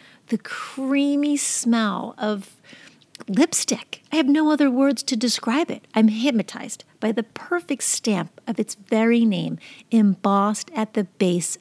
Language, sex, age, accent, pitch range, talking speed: English, female, 50-69, American, 180-235 Hz, 140 wpm